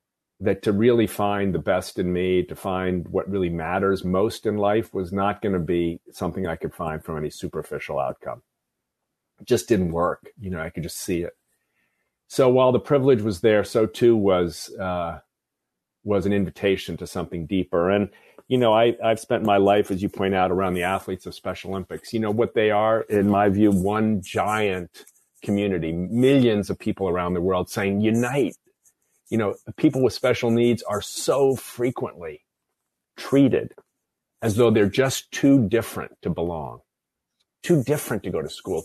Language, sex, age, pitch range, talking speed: English, male, 40-59, 95-120 Hz, 180 wpm